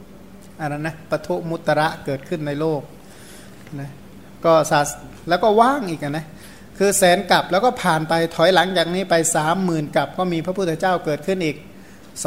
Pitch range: 150-175 Hz